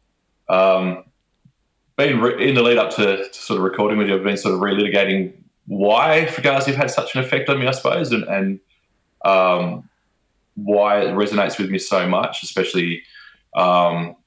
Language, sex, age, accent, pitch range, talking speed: English, male, 20-39, Australian, 90-100 Hz, 175 wpm